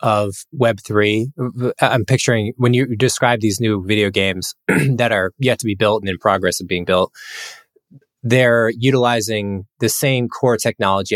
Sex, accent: male, American